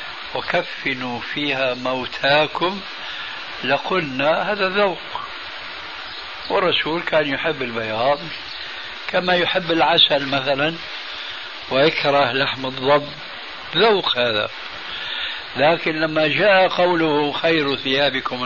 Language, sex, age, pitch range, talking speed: Arabic, male, 60-79, 125-165 Hz, 80 wpm